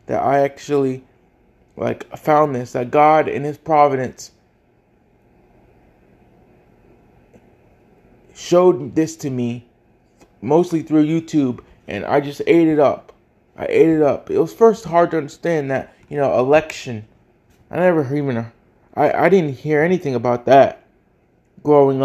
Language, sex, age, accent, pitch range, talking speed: English, male, 20-39, American, 135-160 Hz, 135 wpm